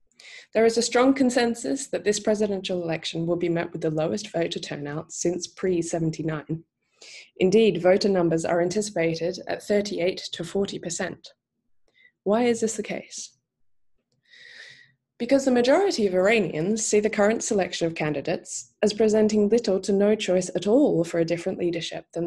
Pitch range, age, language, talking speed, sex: 165-215 Hz, 20-39, English, 155 wpm, female